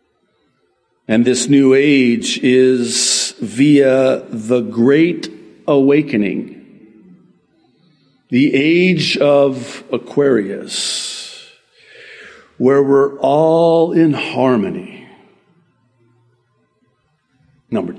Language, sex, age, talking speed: English, male, 50-69, 65 wpm